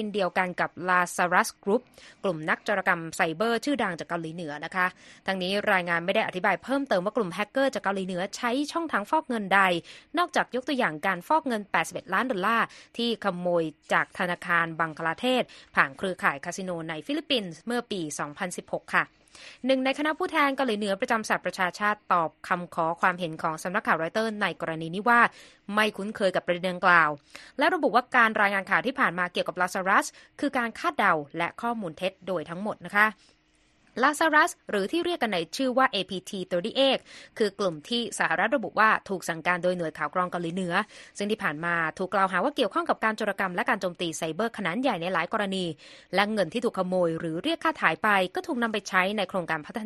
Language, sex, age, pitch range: Thai, female, 20-39, 175-240 Hz